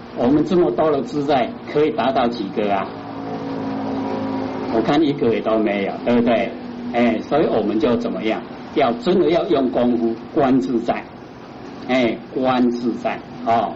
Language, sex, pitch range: Chinese, male, 115-165 Hz